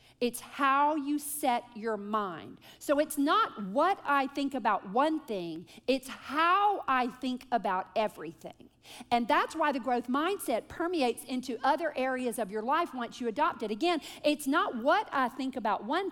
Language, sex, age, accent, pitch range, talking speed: English, female, 50-69, American, 230-305 Hz, 170 wpm